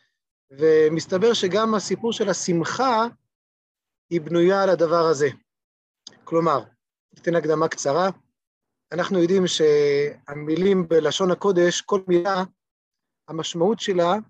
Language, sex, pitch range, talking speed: Hebrew, male, 160-205 Hz, 95 wpm